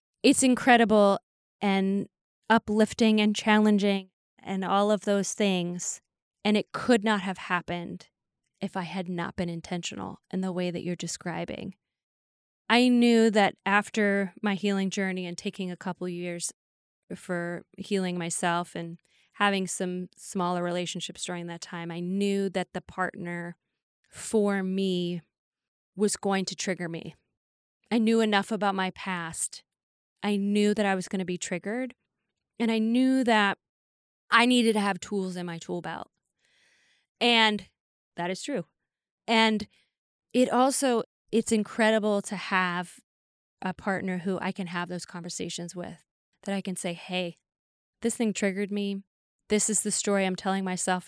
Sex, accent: female, American